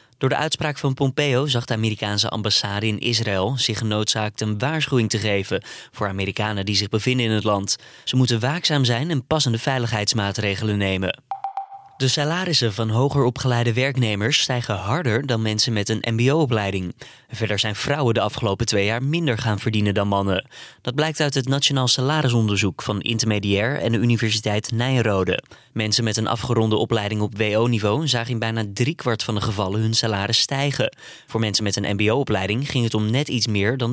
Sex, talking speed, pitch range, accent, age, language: male, 175 wpm, 105-135 Hz, Dutch, 20-39, Dutch